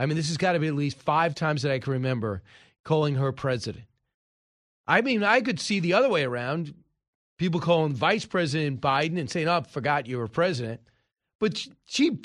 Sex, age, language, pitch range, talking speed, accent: male, 40-59, English, 135-190 Hz, 205 wpm, American